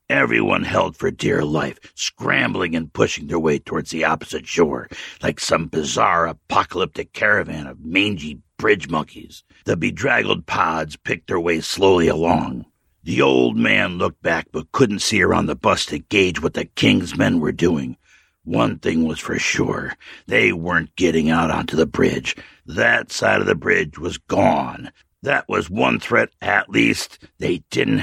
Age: 60-79